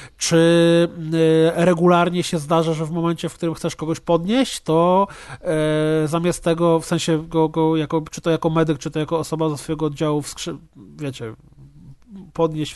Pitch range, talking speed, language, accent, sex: 145-165 Hz, 170 wpm, Polish, native, male